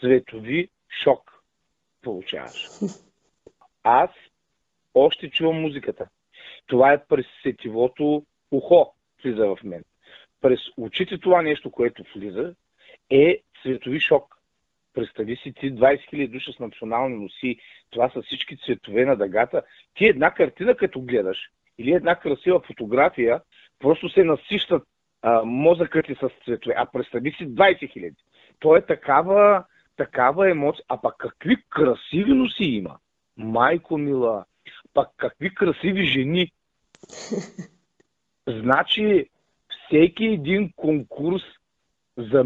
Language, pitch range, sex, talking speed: Bulgarian, 125-180 Hz, male, 115 wpm